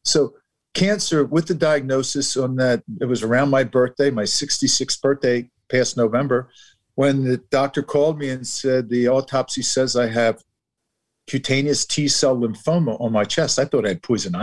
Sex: male